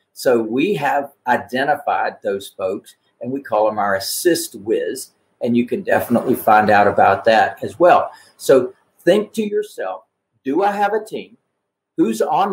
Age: 50-69